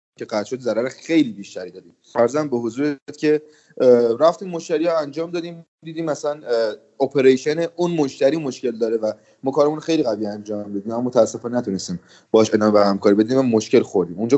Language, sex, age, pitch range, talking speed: Persian, male, 30-49, 115-145 Hz, 165 wpm